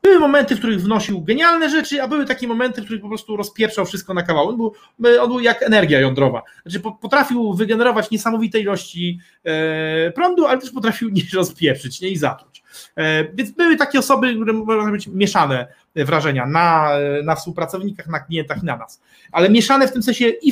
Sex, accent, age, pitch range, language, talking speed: male, native, 30-49, 175-255 Hz, Polish, 185 wpm